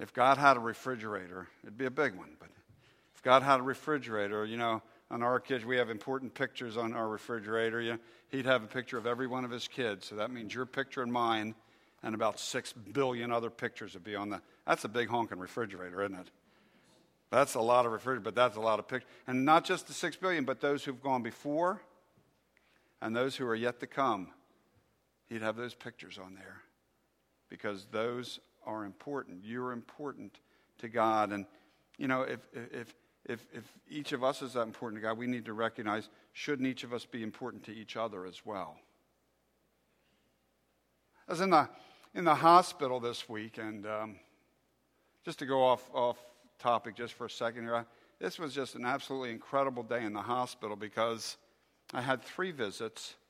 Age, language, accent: 50-69, English, American